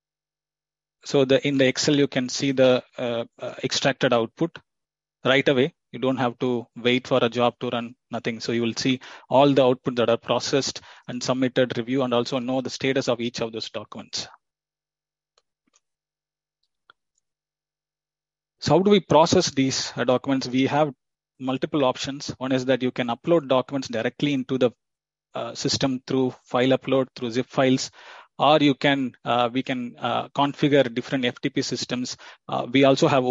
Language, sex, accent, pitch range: English, male, Indian, 120-140 Hz